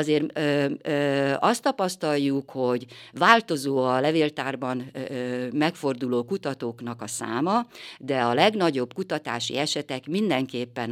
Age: 50-69